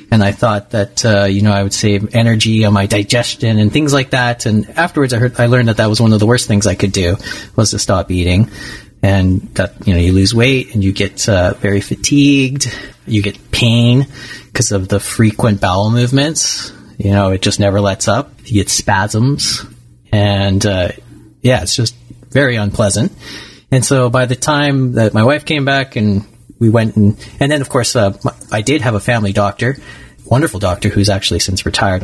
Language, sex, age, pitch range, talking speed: English, male, 30-49, 100-120 Hz, 205 wpm